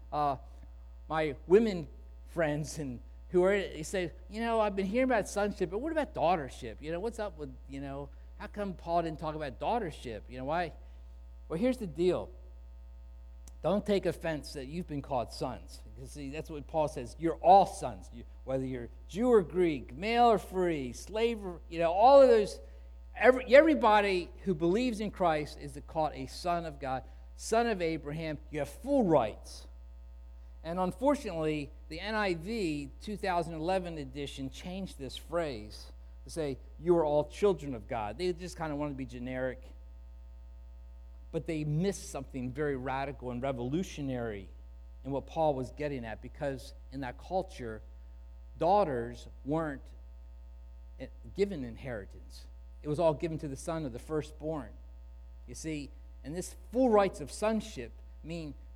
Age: 50-69